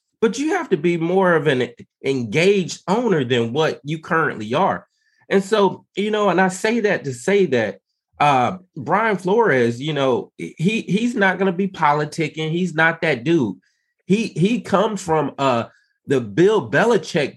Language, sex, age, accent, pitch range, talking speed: English, male, 30-49, American, 155-210 Hz, 175 wpm